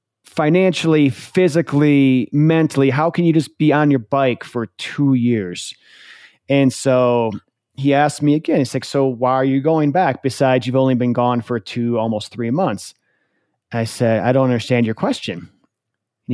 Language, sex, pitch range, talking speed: English, male, 120-140 Hz, 170 wpm